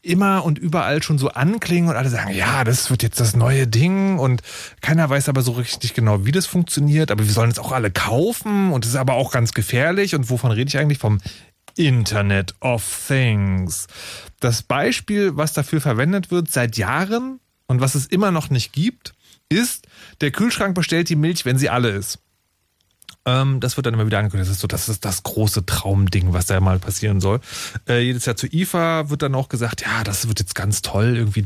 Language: German